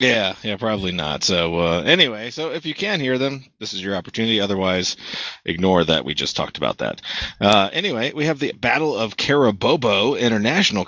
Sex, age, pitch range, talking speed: male, 30-49, 95-120 Hz, 190 wpm